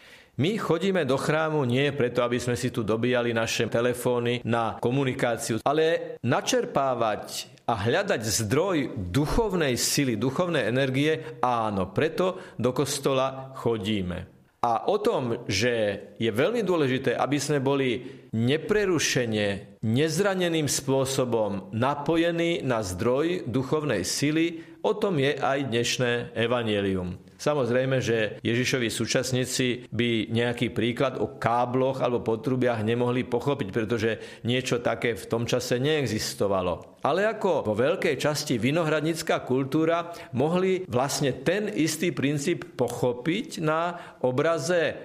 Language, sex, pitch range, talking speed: Slovak, male, 120-160 Hz, 115 wpm